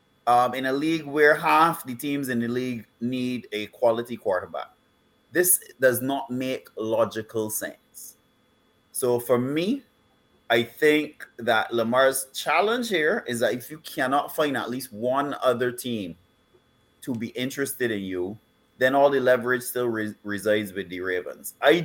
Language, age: English, 30-49